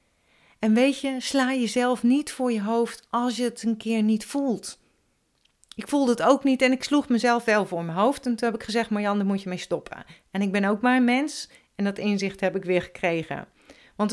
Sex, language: female, Dutch